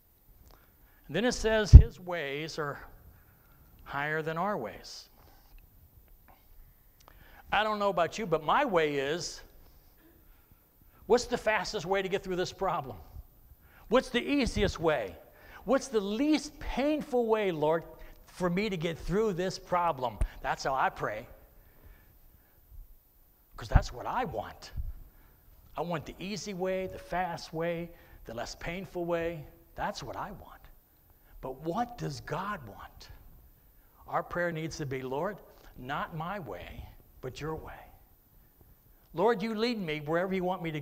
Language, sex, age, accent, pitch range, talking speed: English, male, 60-79, American, 145-190 Hz, 140 wpm